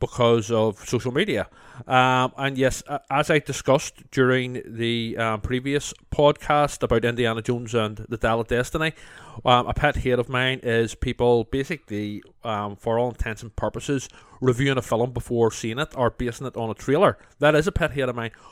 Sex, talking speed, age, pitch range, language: male, 185 wpm, 30-49, 110-130 Hz, English